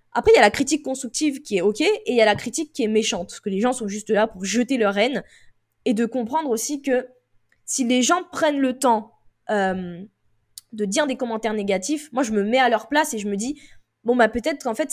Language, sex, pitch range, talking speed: French, female, 205-265 Hz, 255 wpm